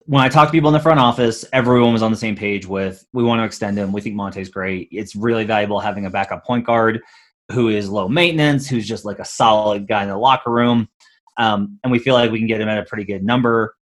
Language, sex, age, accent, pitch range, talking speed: English, male, 30-49, American, 105-125 Hz, 265 wpm